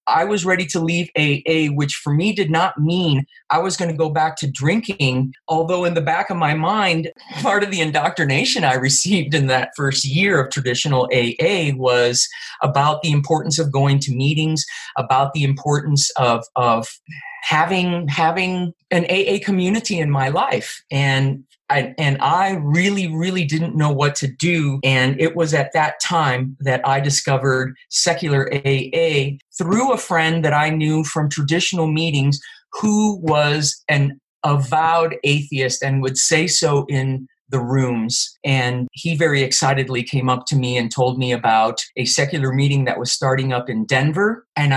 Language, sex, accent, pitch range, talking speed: English, male, American, 130-165 Hz, 170 wpm